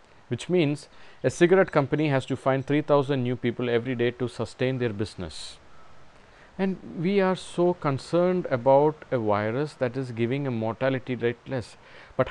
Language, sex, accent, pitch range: English, male, Indian, 115-145 Hz